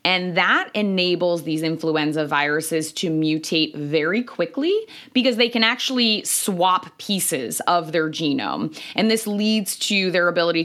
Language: English